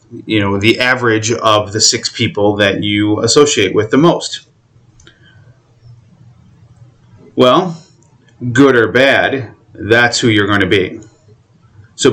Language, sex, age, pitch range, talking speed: English, male, 30-49, 105-125 Hz, 125 wpm